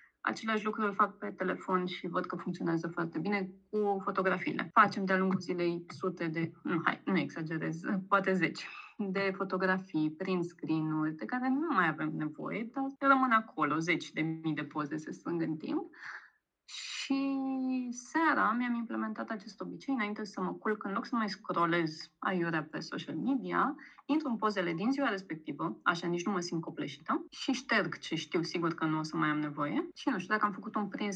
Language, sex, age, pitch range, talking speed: Romanian, female, 20-39, 165-215 Hz, 190 wpm